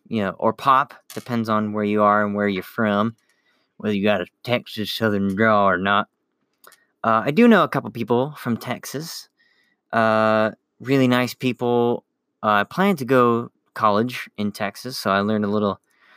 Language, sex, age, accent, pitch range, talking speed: English, male, 30-49, American, 105-130 Hz, 180 wpm